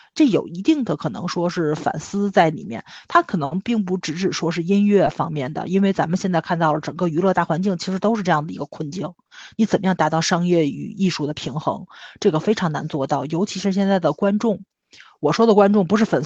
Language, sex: Chinese, female